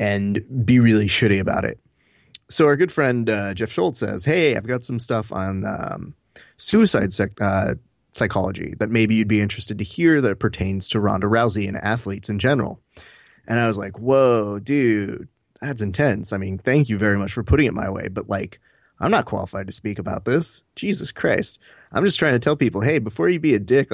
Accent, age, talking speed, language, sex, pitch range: American, 30-49, 205 wpm, English, male, 100-125 Hz